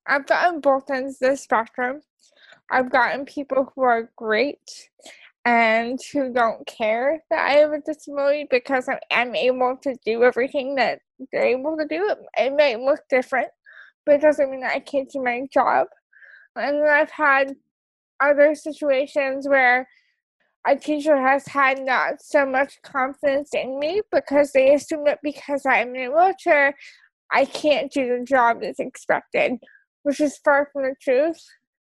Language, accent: English, American